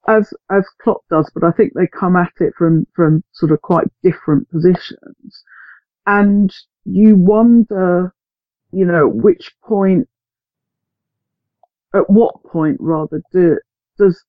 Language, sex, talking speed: English, female, 130 wpm